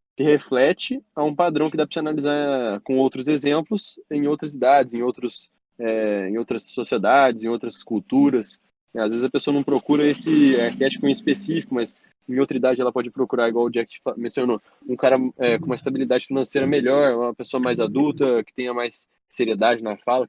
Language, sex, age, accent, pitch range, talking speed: Portuguese, male, 20-39, Brazilian, 125-150 Hz, 185 wpm